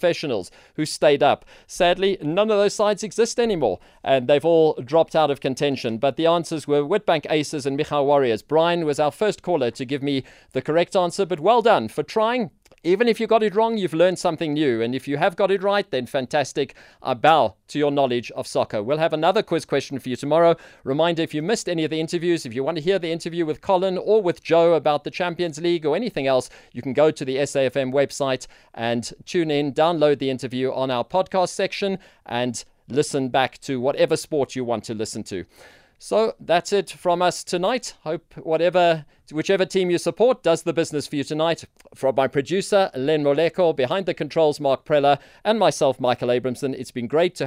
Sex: male